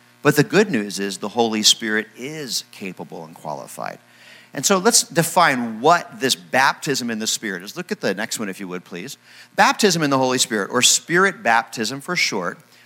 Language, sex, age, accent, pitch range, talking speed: English, male, 50-69, American, 95-140 Hz, 195 wpm